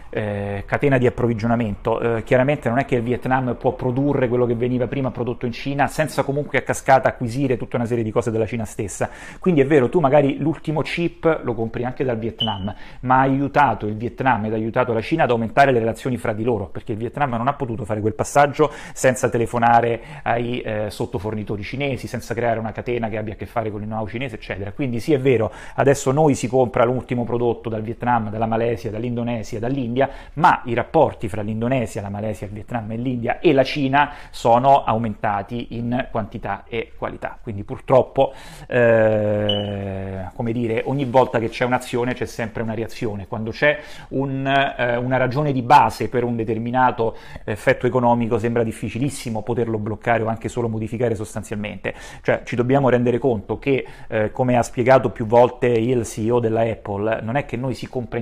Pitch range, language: 115-130 Hz, Italian